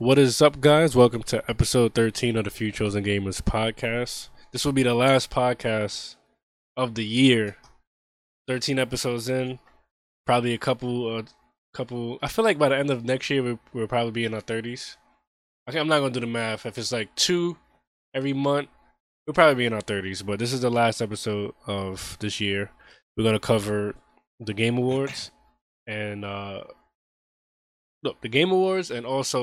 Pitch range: 105-130 Hz